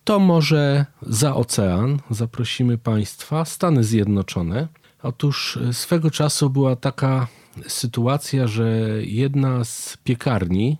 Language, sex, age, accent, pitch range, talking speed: Polish, male, 40-59, native, 115-165 Hz, 100 wpm